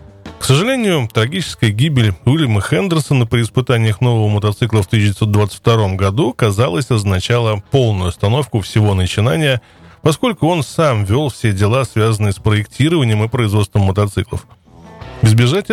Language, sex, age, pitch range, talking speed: Russian, male, 20-39, 105-130 Hz, 120 wpm